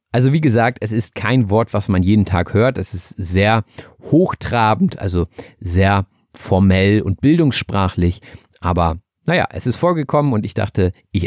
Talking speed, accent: 160 wpm, German